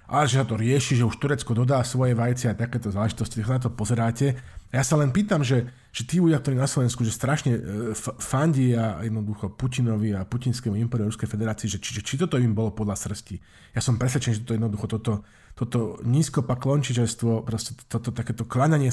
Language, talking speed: Slovak, 200 wpm